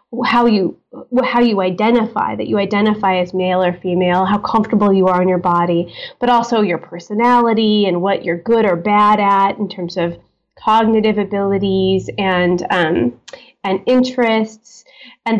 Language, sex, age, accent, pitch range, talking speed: English, female, 20-39, American, 190-245 Hz, 155 wpm